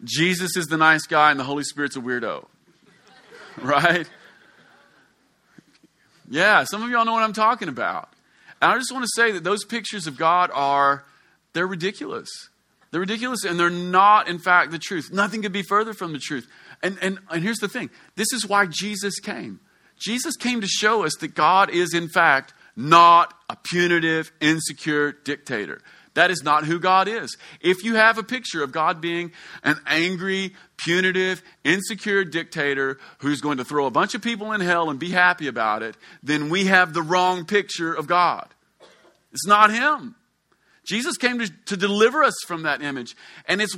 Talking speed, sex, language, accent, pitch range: 180 wpm, male, English, American, 160-210 Hz